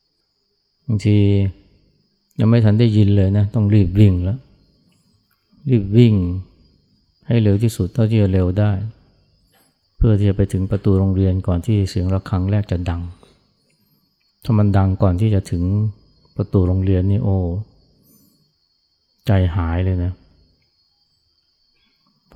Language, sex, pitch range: Thai, male, 90-105 Hz